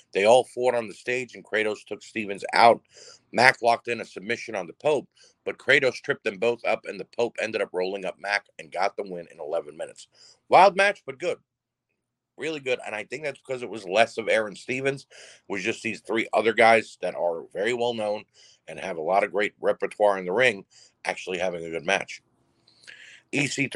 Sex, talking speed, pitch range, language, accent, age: male, 210 wpm, 105-140 Hz, English, American, 50-69